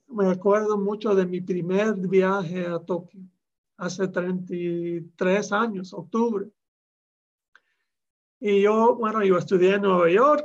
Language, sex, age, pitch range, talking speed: Spanish, male, 40-59, 195-245 Hz, 120 wpm